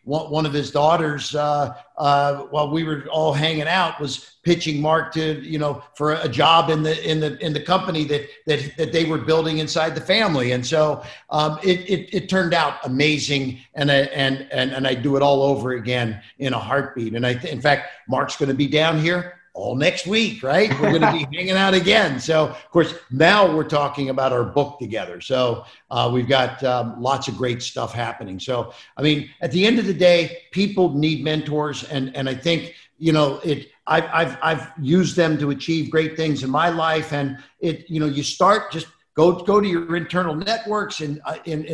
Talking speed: 215 wpm